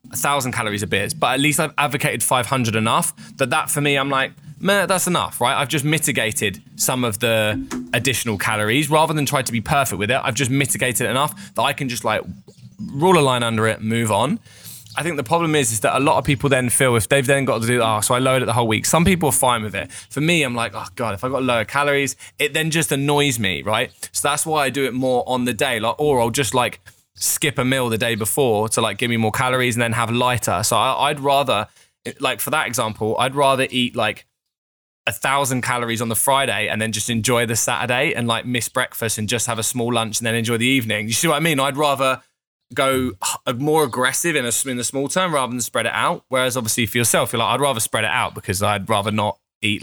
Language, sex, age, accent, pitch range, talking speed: English, male, 20-39, British, 115-140 Hz, 250 wpm